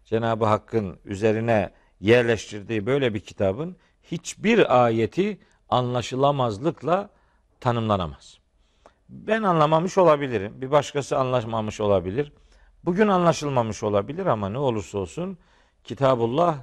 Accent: native